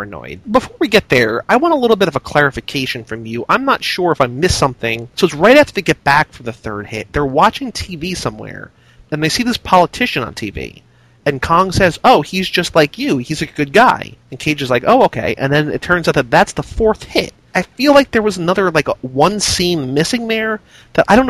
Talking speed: 240 wpm